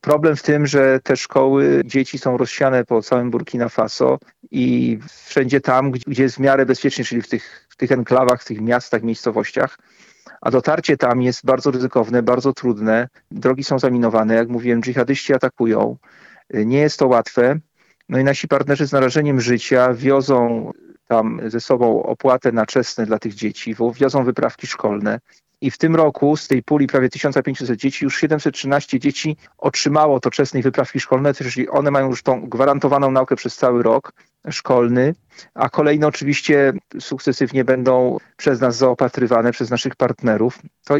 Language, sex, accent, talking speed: Polish, male, native, 160 wpm